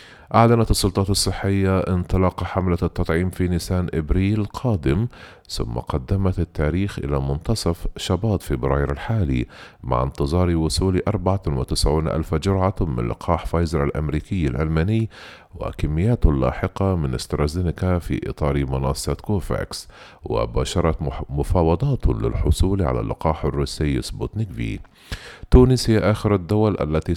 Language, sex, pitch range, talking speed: Arabic, male, 75-100 Hz, 110 wpm